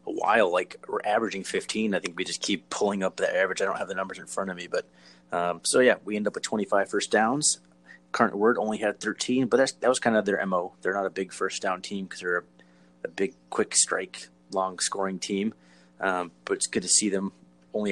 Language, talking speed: English, 245 wpm